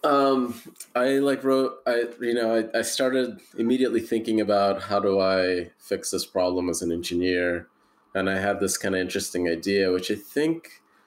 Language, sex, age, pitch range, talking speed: English, male, 20-39, 95-120 Hz, 180 wpm